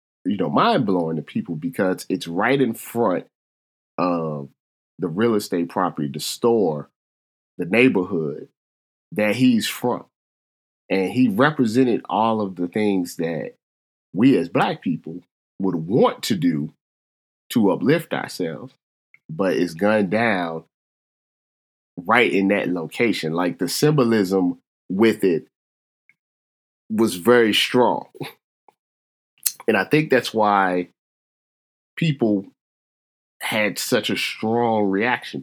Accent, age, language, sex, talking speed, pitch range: American, 30-49, English, male, 115 wpm, 80-115 Hz